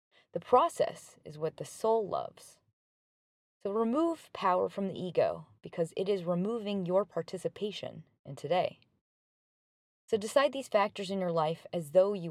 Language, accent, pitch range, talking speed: English, American, 155-210 Hz, 150 wpm